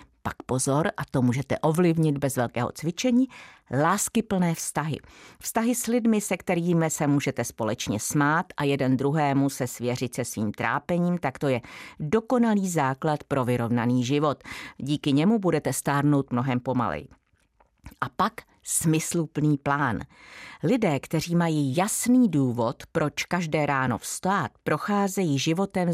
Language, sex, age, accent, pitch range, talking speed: Czech, female, 50-69, native, 130-175 Hz, 130 wpm